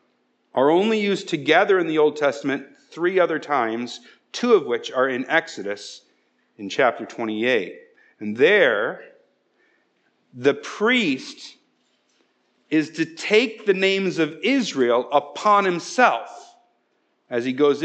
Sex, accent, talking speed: male, American, 120 wpm